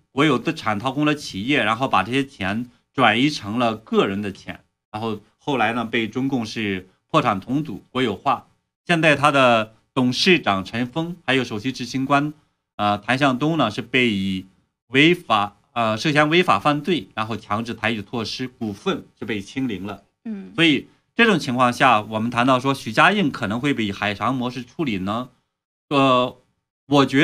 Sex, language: male, Chinese